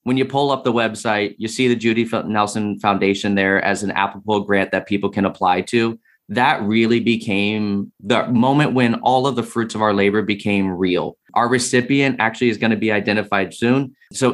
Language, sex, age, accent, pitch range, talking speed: English, male, 20-39, American, 100-120 Hz, 195 wpm